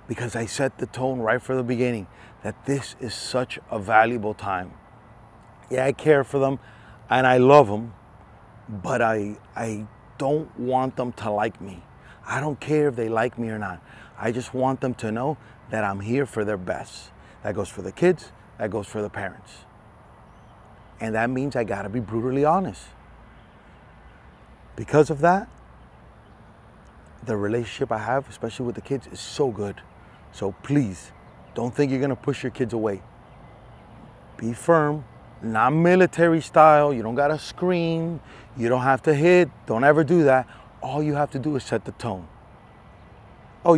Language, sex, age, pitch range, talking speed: English, male, 30-49, 110-140 Hz, 170 wpm